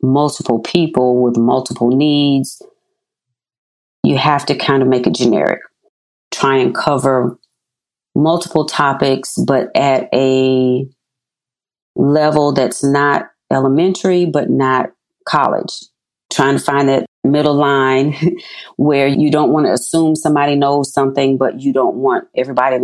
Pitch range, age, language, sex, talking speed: 125-145 Hz, 40-59, English, female, 130 wpm